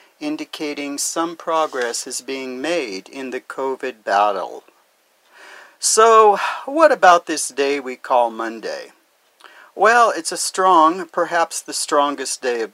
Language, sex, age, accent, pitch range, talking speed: English, male, 50-69, American, 130-215 Hz, 125 wpm